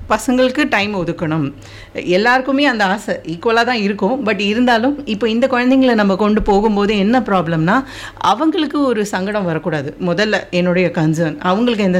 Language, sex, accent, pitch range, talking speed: Tamil, female, native, 185-240 Hz, 140 wpm